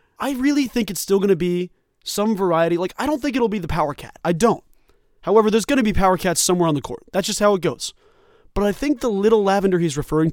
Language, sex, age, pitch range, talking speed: English, male, 20-39, 155-210 Hz, 260 wpm